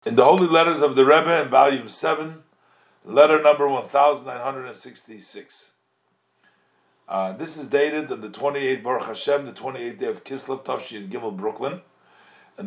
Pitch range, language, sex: 140-185 Hz, English, male